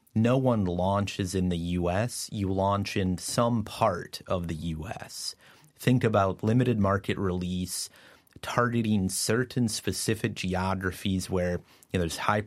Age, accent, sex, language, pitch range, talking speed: 30-49, American, male, English, 90-105 Hz, 125 wpm